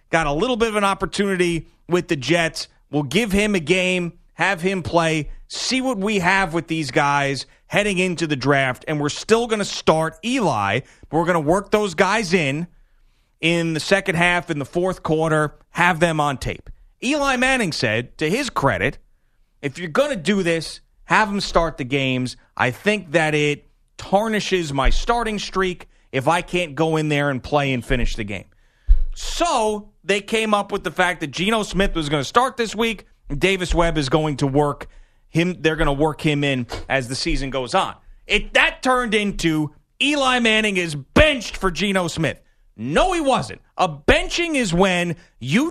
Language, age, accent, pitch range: English, 30-49, American, 155-210 Hz